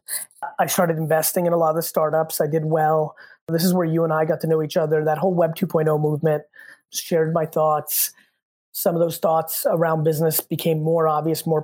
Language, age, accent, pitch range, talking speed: English, 30-49, American, 155-185 Hz, 210 wpm